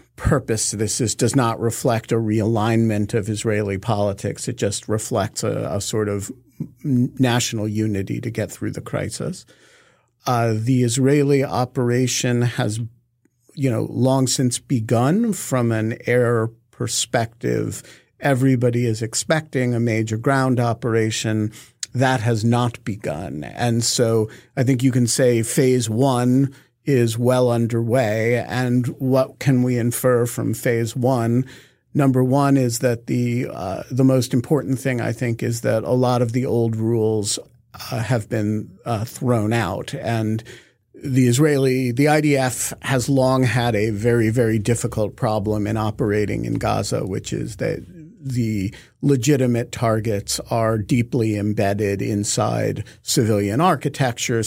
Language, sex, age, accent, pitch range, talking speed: English, male, 50-69, American, 110-130 Hz, 140 wpm